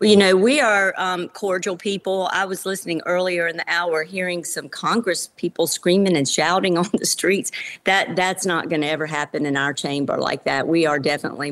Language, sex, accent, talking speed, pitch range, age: English, female, American, 205 wpm, 150-175 Hz, 50-69